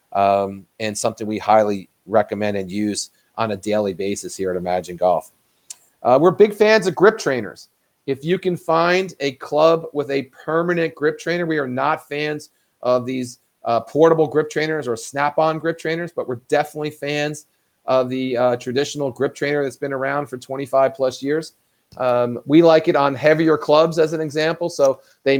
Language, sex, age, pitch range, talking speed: English, male, 40-59, 120-150 Hz, 180 wpm